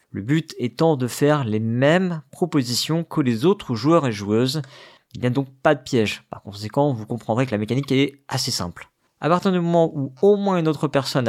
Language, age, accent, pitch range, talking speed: French, 50-69, French, 120-165 Hz, 220 wpm